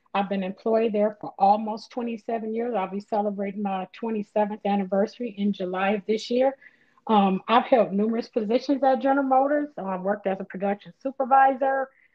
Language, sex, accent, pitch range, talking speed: English, female, American, 200-245 Hz, 165 wpm